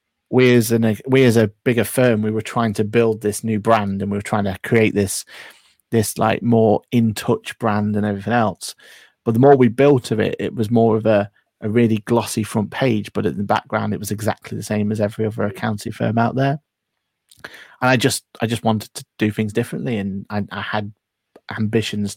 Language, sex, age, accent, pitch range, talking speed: English, male, 30-49, British, 105-120 Hz, 215 wpm